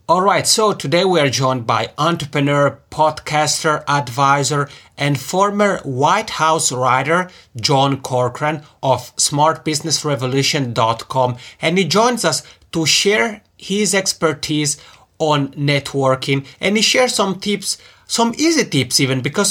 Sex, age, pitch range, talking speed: male, 30-49, 135-175 Hz, 120 wpm